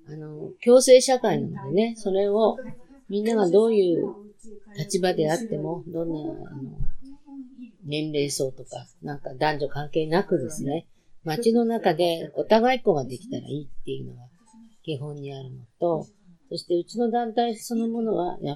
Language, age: Japanese, 40-59